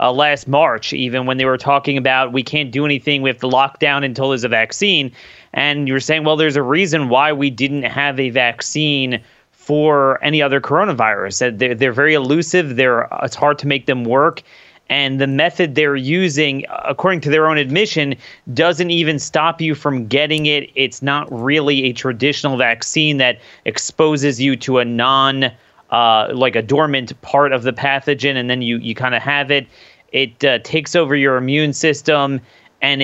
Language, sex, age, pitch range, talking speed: English, male, 30-49, 130-155 Hz, 195 wpm